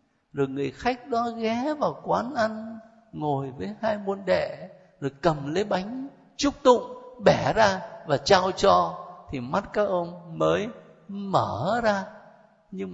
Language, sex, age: Vietnamese, male, 60-79